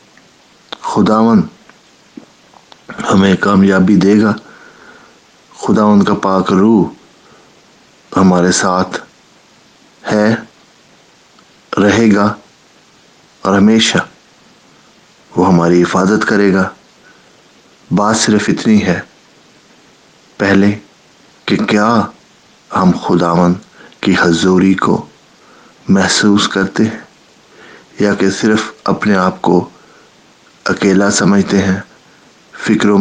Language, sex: English, male